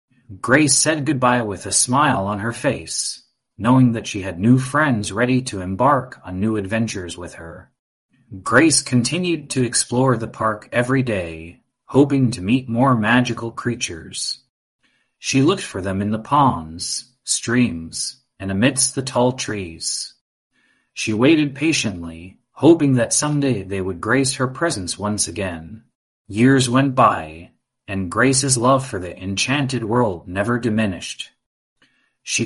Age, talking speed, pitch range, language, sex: 30-49, 140 wpm, 100-130 Hz, English, male